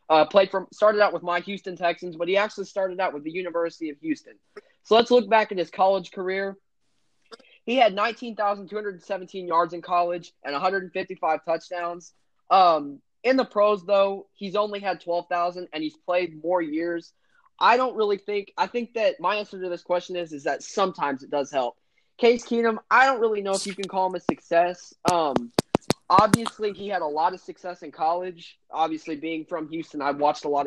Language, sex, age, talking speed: English, male, 20-39, 195 wpm